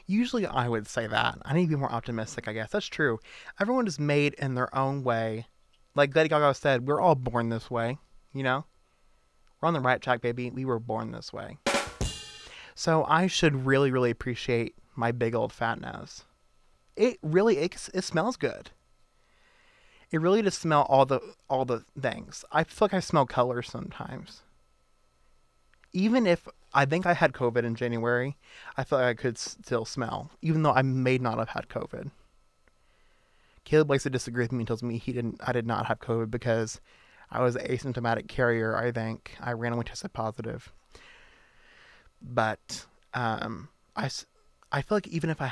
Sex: male